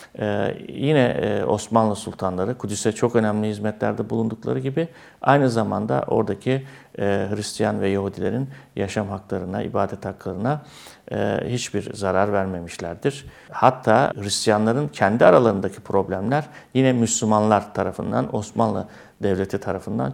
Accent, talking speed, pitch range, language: native, 105 wpm, 100-120 Hz, Turkish